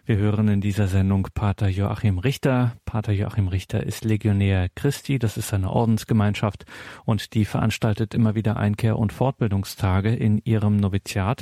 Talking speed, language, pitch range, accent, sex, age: 150 wpm, German, 105-125 Hz, German, male, 40-59